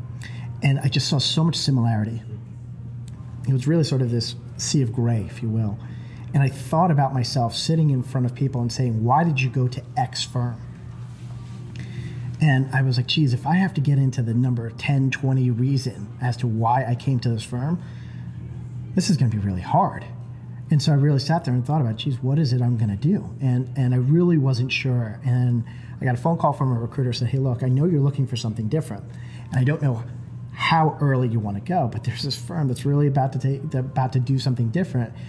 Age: 40-59